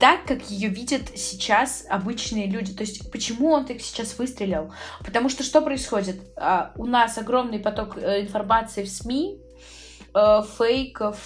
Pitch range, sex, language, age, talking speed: 195-245 Hz, female, Russian, 20-39, 140 wpm